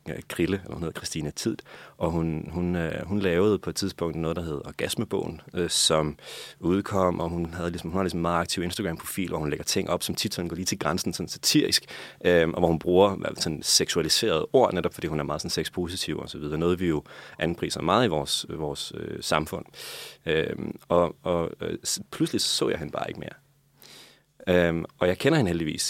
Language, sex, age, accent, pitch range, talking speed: Danish, male, 30-49, native, 85-100 Hz, 205 wpm